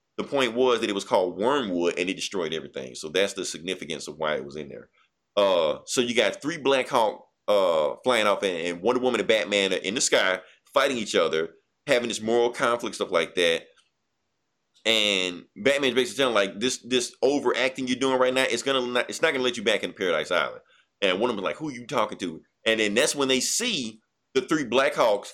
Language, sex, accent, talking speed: English, male, American, 230 wpm